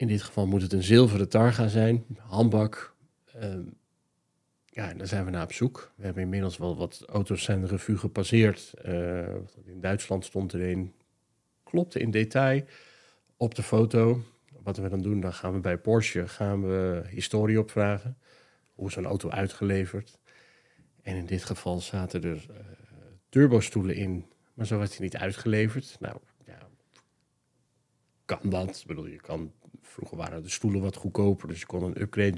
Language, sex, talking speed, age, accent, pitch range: Dutch, male, 165 wpm, 40-59, Dutch, 95-110 Hz